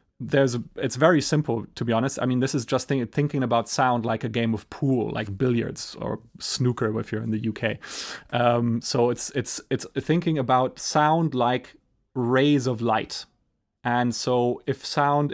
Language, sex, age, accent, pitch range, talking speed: English, male, 30-49, German, 115-145 Hz, 185 wpm